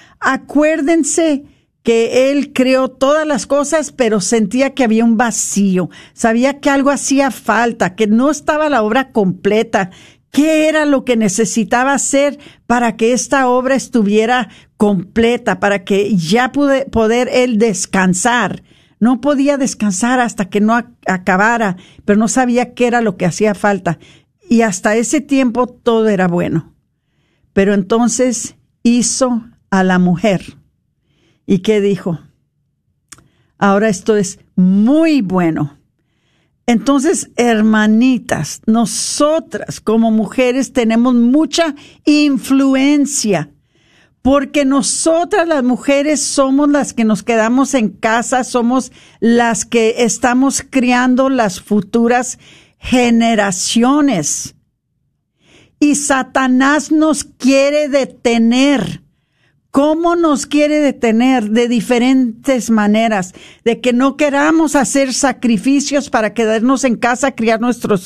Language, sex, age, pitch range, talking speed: Spanish, female, 50-69, 215-275 Hz, 115 wpm